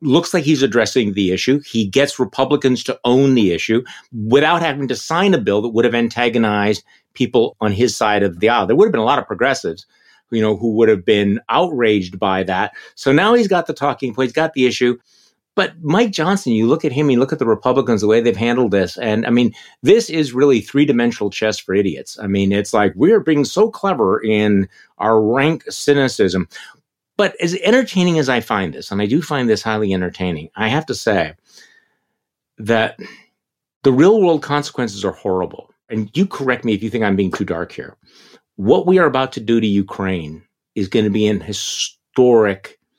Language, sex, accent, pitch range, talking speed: English, male, American, 105-145 Hz, 205 wpm